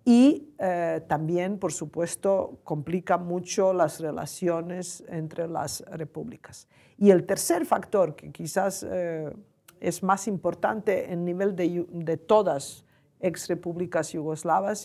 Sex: female